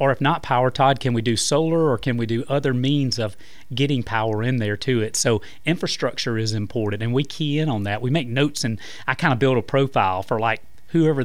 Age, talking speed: 30-49, 240 wpm